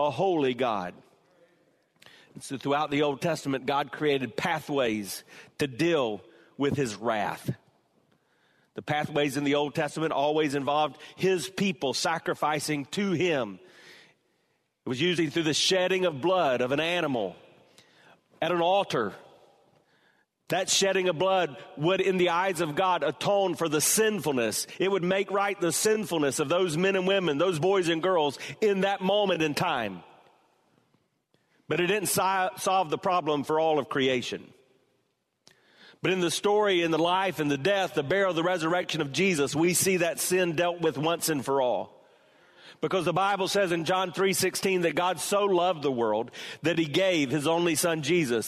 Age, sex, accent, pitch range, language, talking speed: 40-59, male, American, 150-190 Hz, English, 165 wpm